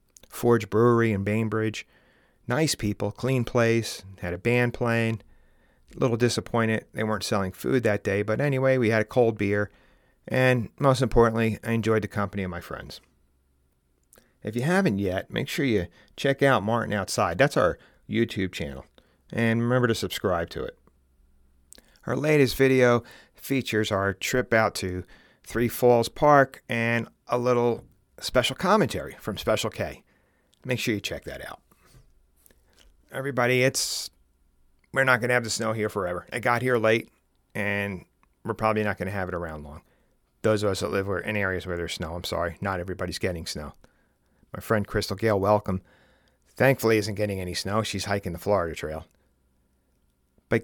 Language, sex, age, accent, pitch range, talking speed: English, male, 40-59, American, 90-120 Hz, 165 wpm